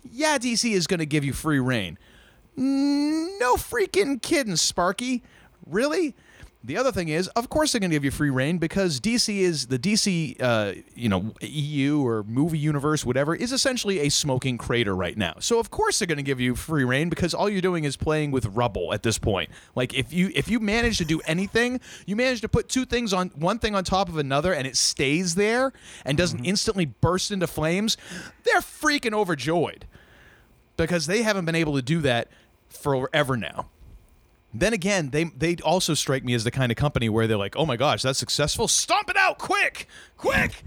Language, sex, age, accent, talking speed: English, male, 30-49, American, 205 wpm